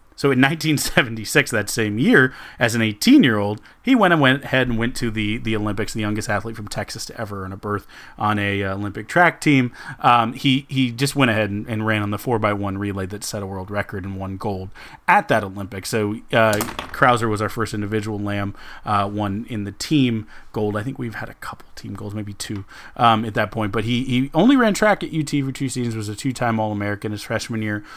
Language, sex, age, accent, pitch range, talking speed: English, male, 30-49, American, 105-120 Hz, 225 wpm